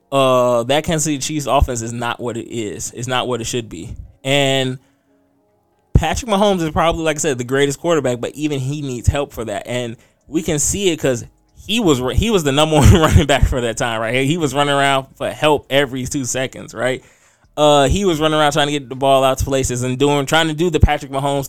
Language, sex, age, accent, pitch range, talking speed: English, male, 20-39, American, 125-150 Hz, 235 wpm